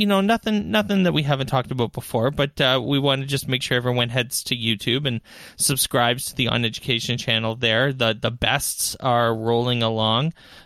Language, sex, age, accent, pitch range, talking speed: English, male, 20-39, American, 115-135 Hz, 205 wpm